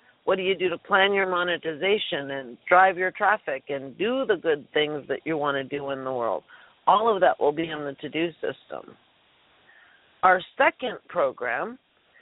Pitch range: 165-250 Hz